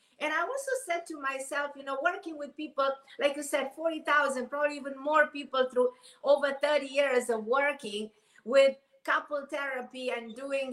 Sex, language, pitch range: female, English, 250-315 Hz